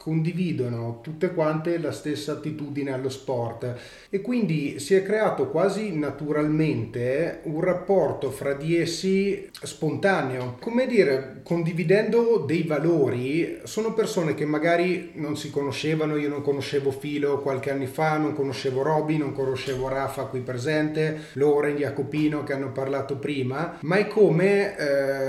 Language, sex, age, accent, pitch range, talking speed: Italian, male, 30-49, native, 135-155 Hz, 140 wpm